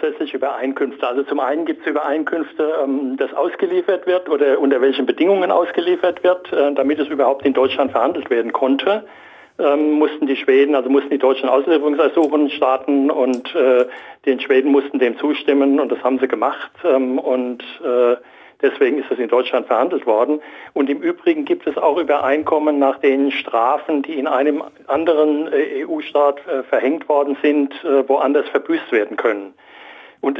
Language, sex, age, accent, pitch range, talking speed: German, male, 60-79, German, 135-205 Hz, 165 wpm